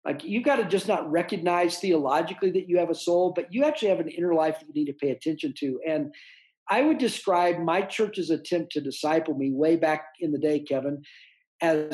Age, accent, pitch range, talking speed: 50-69, American, 155-190 Hz, 220 wpm